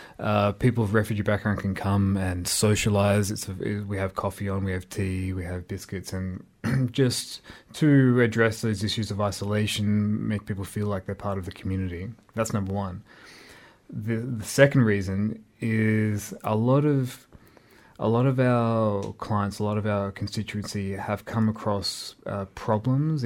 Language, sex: English, male